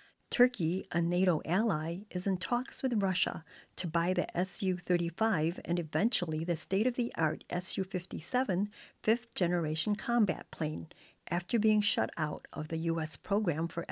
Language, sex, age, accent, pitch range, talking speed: English, female, 50-69, American, 165-205 Hz, 135 wpm